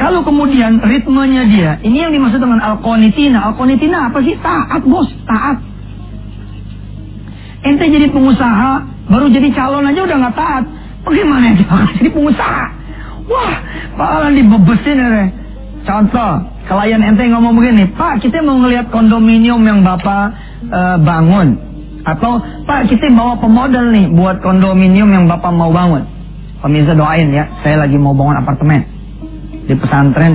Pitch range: 155-260 Hz